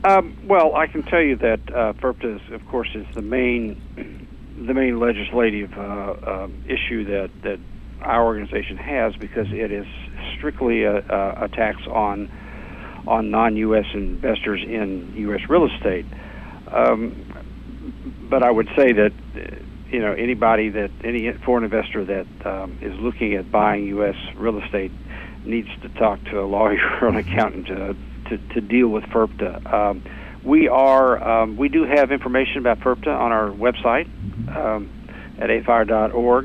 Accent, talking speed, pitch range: American, 165 wpm, 100-115 Hz